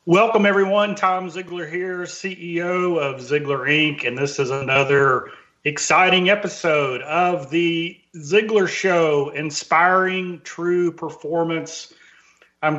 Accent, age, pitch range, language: American, 40-59, 145-180 Hz, English